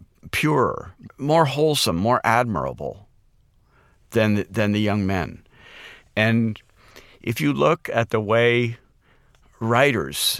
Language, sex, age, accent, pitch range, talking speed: English, male, 50-69, American, 100-120 Hz, 105 wpm